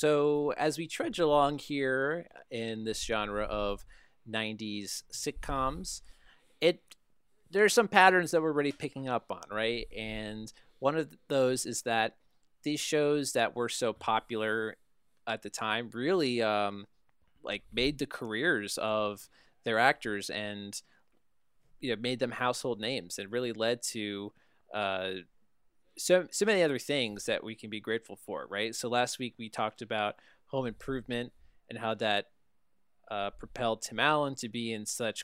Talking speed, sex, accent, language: 155 wpm, male, American, English